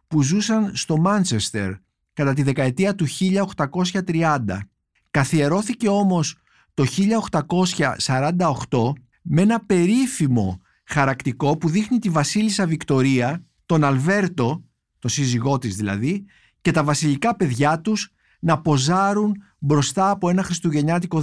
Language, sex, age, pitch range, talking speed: Greek, male, 50-69, 130-180 Hz, 110 wpm